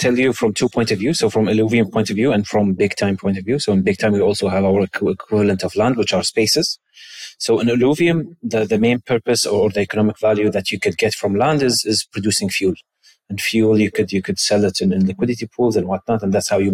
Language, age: English, 30-49